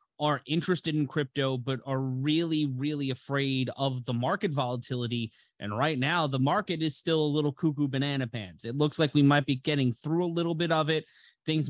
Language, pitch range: English, 125-150 Hz